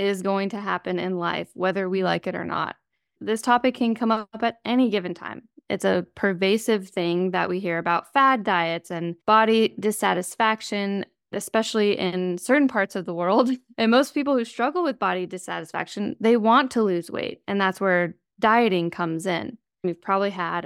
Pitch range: 185-235 Hz